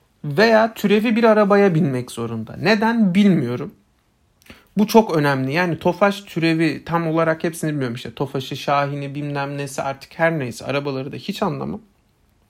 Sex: male